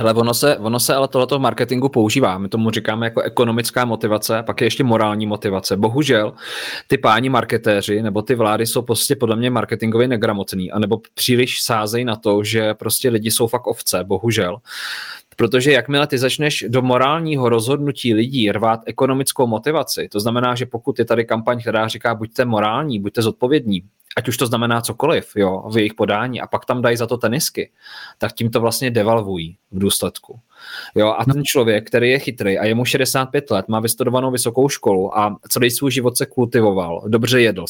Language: Czech